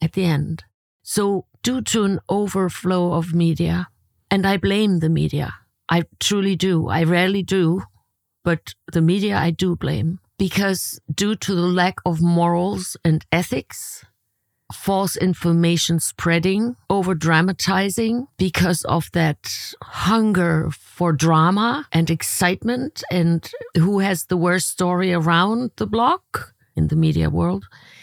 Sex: female